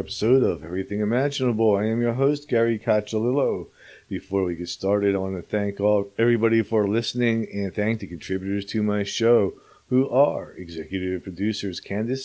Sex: male